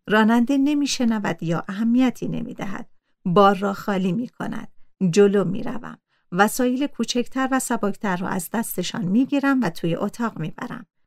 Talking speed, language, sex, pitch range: 145 wpm, Persian, female, 185-250 Hz